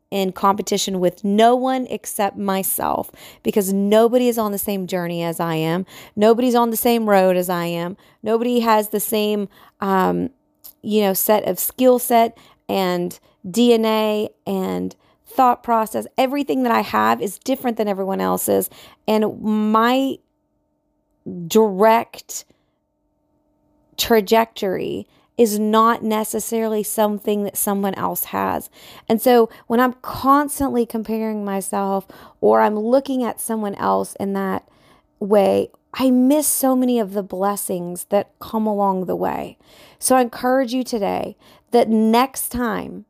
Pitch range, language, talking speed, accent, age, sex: 195-240 Hz, English, 135 wpm, American, 30-49, female